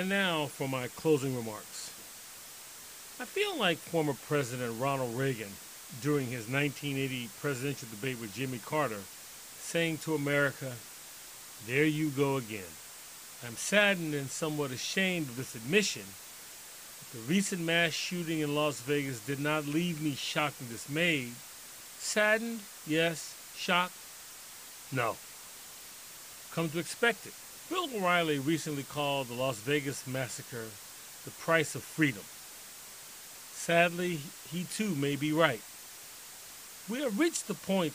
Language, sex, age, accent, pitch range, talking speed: English, male, 40-59, American, 135-175 Hz, 130 wpm